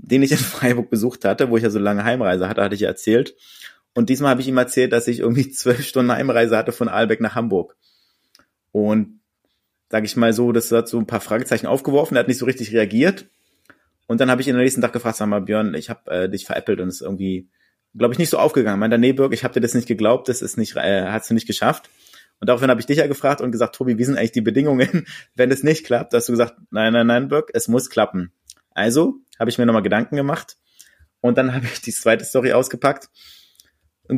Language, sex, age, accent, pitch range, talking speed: German, male, 30-49, German, 110-125 Hz, 250 wpm